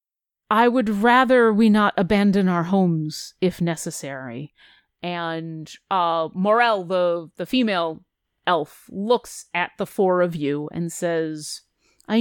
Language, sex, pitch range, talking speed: English, female, 165-210 Hz, 130 wpm